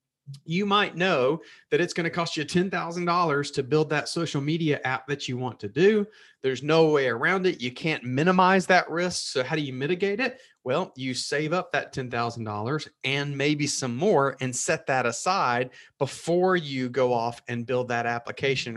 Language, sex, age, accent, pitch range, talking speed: English, male, 30-49, American, 125-170 Hz, 190 wpm